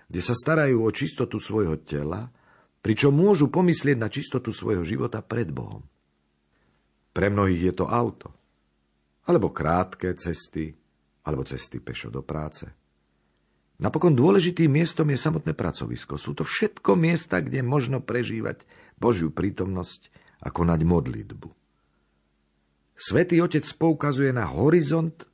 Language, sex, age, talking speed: Slovak, male, 50-69, 125 wpm